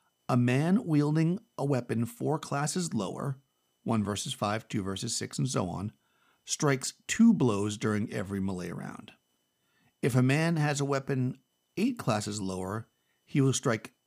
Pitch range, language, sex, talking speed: 105-140 Hz, English, male, 155 wpm